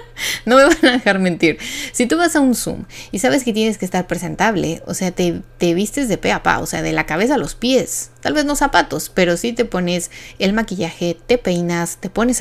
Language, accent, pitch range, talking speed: Spanish, Mexican, 170-220 Hz, 240 wpm